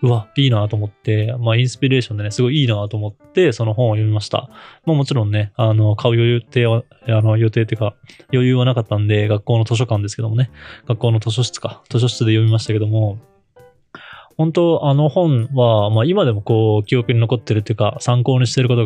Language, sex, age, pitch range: Japanese, male, 20-39, 110-135 Hz